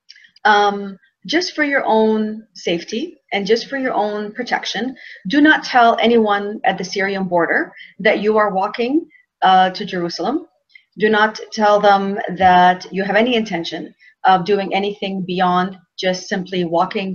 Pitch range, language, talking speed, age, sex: 185-240 Hz, English, 150 wpm, 30-49, female